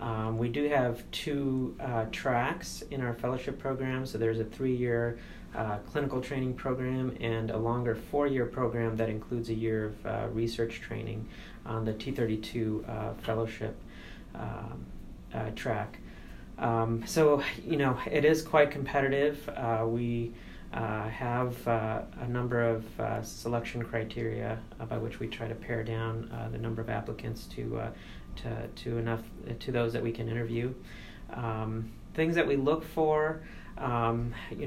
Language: English